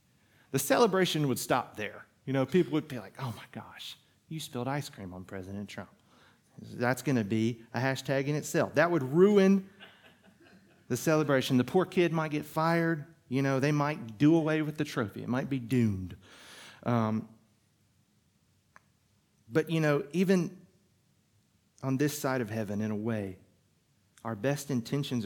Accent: American